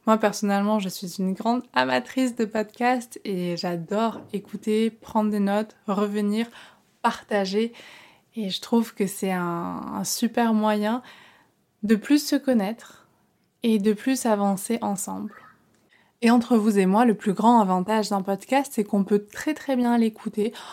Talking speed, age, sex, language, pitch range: 155 wpm, 20-39, female, French, 200-235 Hz